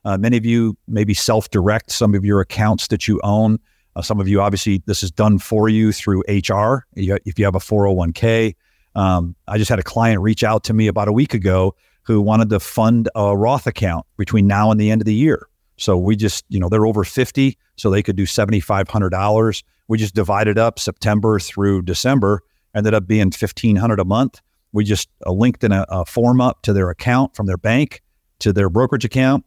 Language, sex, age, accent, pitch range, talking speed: English, male, 50-69, American, 95-110 Hz, 210 wpm